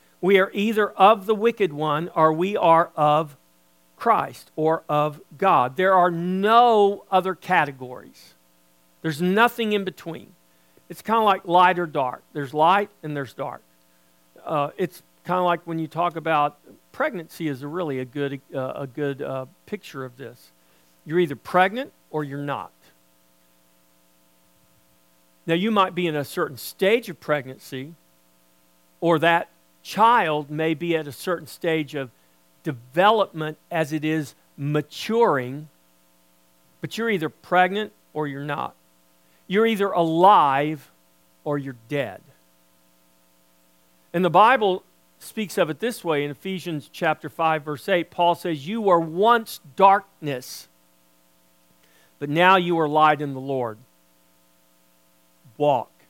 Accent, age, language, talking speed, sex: American, 50-69, English, 140 wpm, male